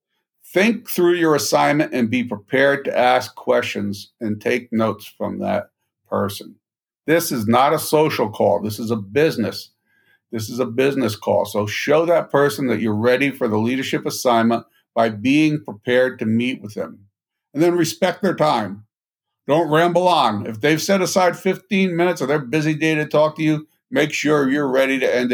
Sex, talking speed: male, 180 wpm